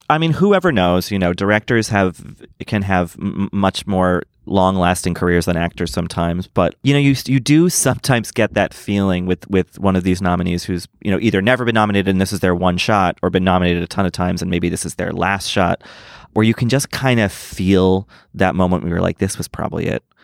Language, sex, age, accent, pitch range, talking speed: English, male, 30-49, American, 95-125 Hz, 230 wpm